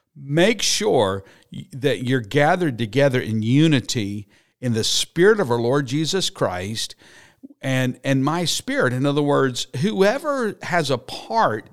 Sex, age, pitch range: male, 50-69, 105-155 Hz